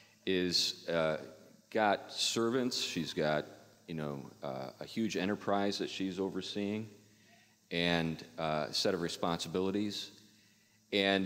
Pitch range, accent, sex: 85-105 Hz, American, male